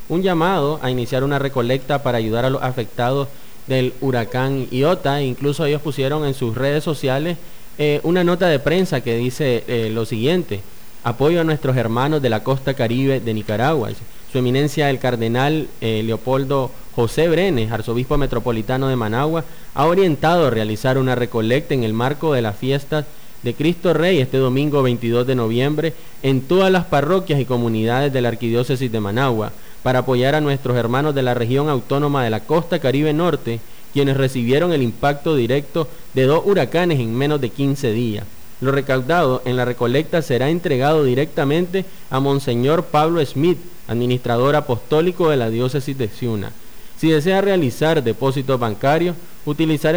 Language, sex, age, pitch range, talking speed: Spanish, male, 20-39, 125-155 Hz, 165 wpm